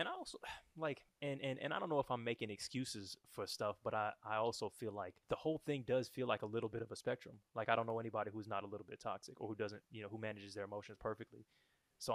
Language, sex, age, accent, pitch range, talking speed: English, male, 20-39, American, 100-120 Hz, 275 wpm